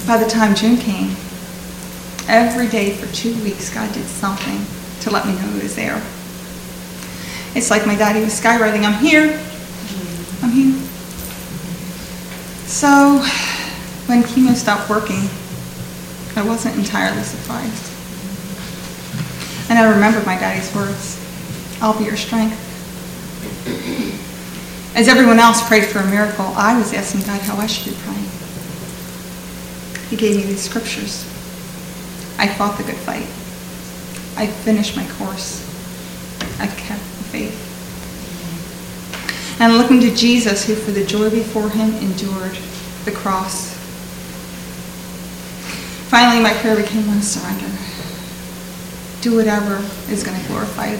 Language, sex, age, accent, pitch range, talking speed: English, female, 40-59, American, 185-225 Hz, 125 wpm